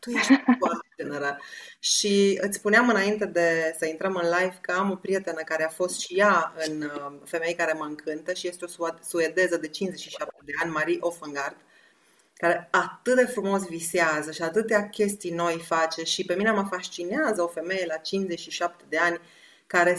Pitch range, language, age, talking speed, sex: 165-210 Hz, Romanian, 30-49, 170 wpm, female